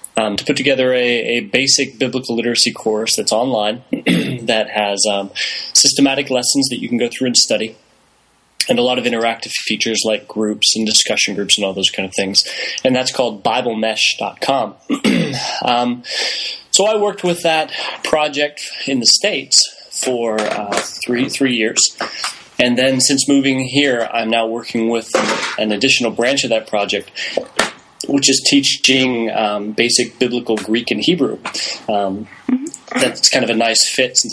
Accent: American